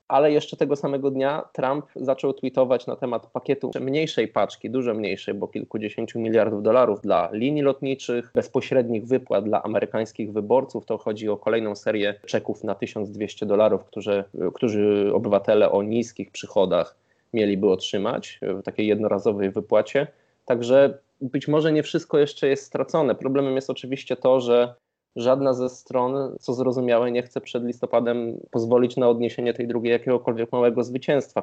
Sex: male